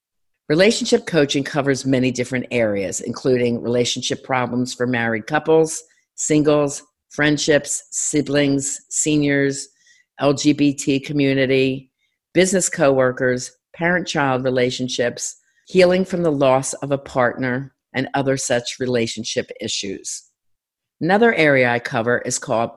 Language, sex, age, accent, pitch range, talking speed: English, female, 50-69, American, 125-165 Hz, 105 wpm